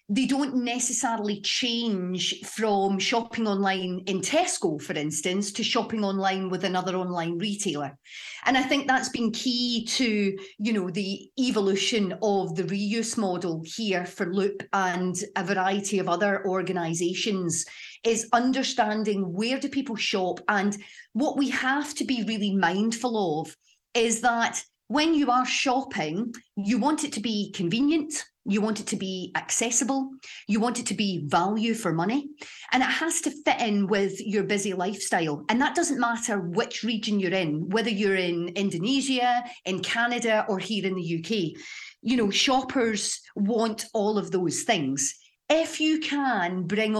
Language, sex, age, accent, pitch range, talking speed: English, female, 40-59, British, 195-245 Hz, 160 wpm